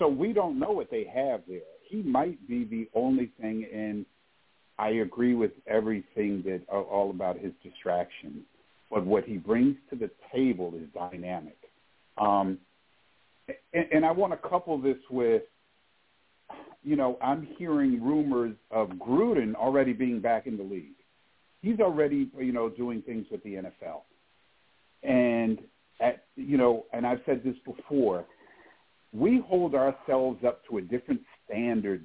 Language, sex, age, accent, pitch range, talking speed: English, male, 50-69, American, 110-155 Hz, 150 wpm